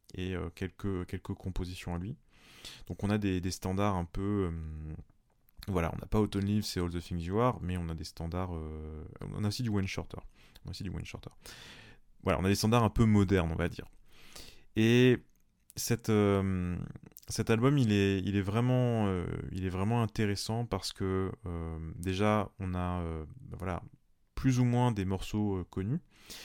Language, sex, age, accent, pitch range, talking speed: French, male, 20-39, French, 90-110 Hz, 190 wpm